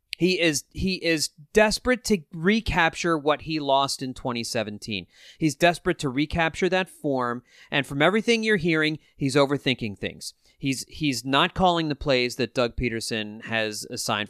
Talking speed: 155 wpm